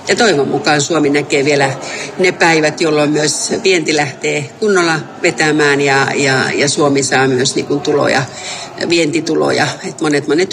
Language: Finnish